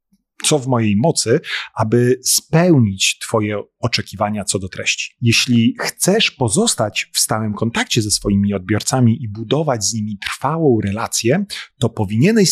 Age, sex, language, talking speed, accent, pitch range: 40-59, male, Polish, 135 wpm, native, 105-135 Hz